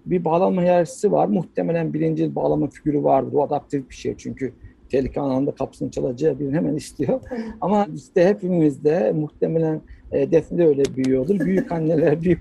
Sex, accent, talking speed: male, native, 155 wpm